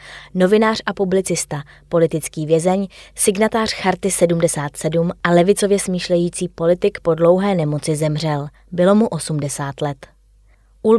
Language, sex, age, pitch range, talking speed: Czech, female, 20-39, 165-195 Hz, 115 wpm